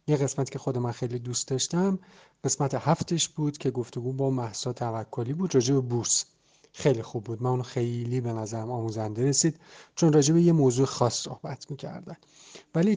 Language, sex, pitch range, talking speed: Arabic, male, 120-150 Hz, 175 wpm